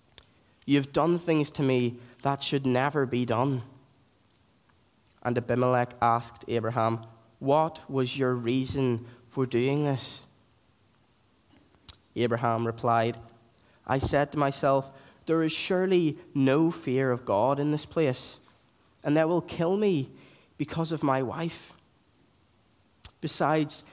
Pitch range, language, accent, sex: 115-140 Hz, English, British, male